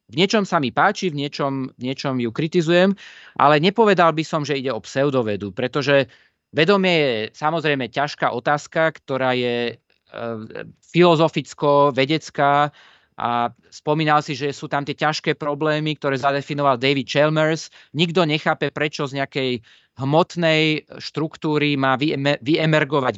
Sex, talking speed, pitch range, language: male, 130 wpm, 135-180 Hz, Slovak